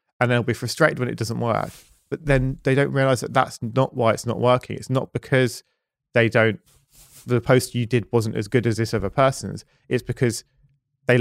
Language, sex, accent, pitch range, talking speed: English, male, British, 115-135 Hz, 210 wpm